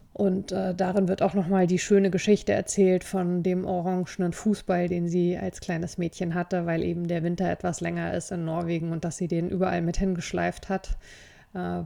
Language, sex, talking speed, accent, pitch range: German, female, 190 wpm, German, 170-190 Hz